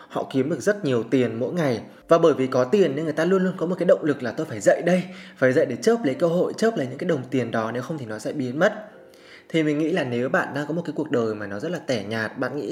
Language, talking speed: Vietnamese, 325 wpm